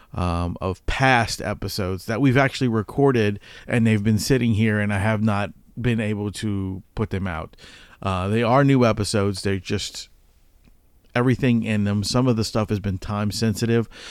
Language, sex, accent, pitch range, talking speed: English, male, American, 95-115 Hz, 175 wpm